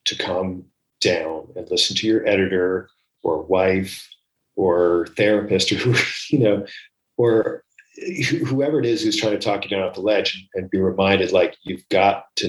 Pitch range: 90-140 Hz